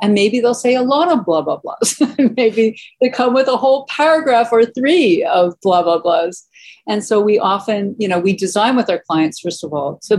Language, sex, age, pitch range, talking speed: English, female, 50-69, 165-230 Hz, 225 wpm